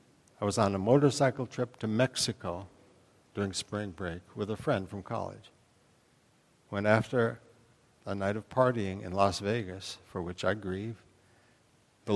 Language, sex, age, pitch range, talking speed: English, male, 60-79, 100-125 Hz, 150 wpm